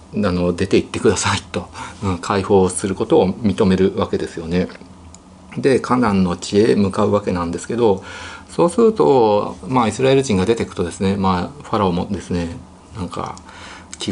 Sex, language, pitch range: male, Japanese, 90-110 Hz